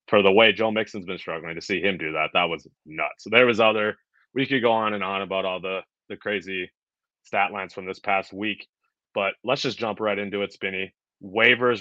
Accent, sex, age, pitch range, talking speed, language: American, male, 30-49, 95-110 Hz, 230 wpm, English